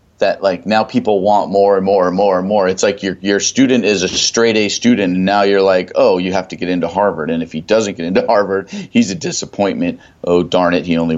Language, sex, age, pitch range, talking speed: English, male, 40-59, 85-110 Hz, 260 wpm